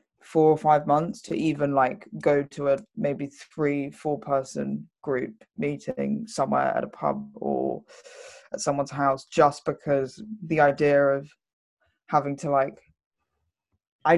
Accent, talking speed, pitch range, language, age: British, 140 wpm, 135-155 Hz, English, 20-39